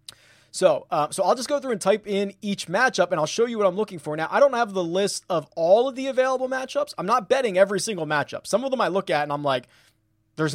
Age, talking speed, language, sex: 20-39, 275 wpm, English, male